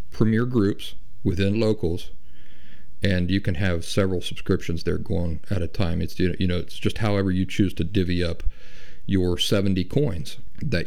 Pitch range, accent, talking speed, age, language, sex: 85-105 Hz, American, 165 wpm, 50-69, English, male